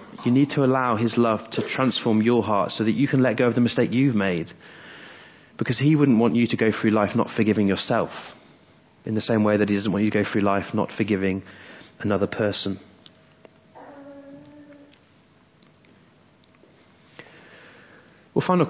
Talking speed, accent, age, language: 165 wpm, British, 30-49, English